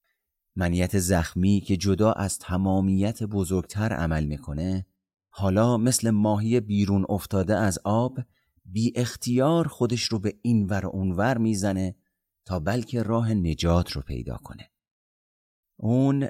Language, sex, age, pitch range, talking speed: Persian, male, 30-49, 85-110 Hz, 120 wpm